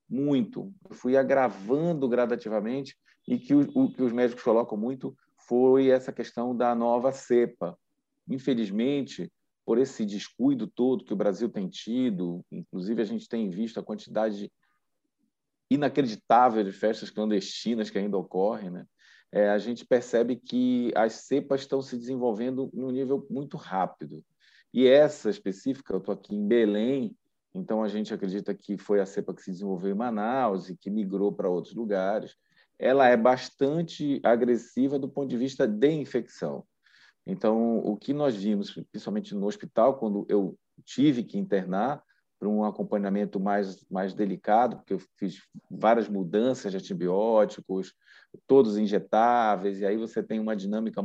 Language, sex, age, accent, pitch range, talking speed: Portuguese, male, 40-59, Brazilian, 105-135 Hz, 155 wpm